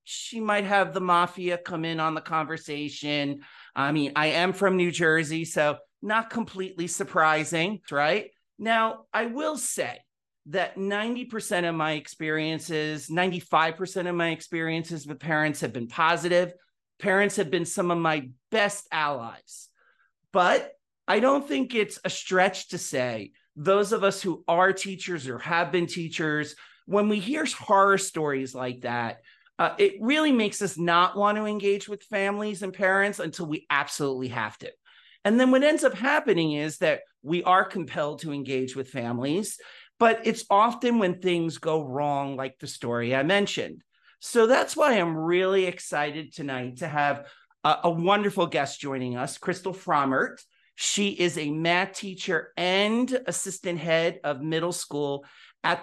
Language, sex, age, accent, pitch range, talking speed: English, male, 40-59, American, 150-200 Hz, 160 wpm